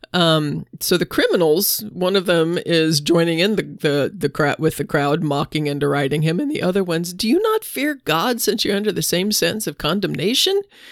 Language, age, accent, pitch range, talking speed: English, 40-59, American, 155-200 Hz, 210 wpm